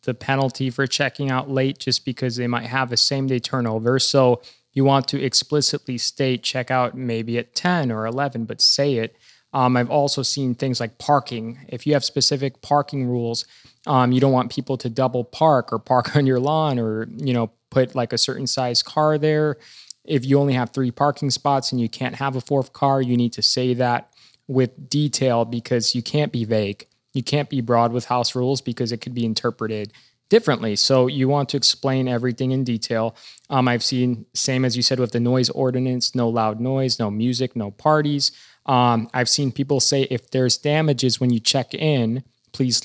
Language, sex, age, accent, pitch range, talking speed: English, male, 20-39, American, 120-135 Hz, 205 wpm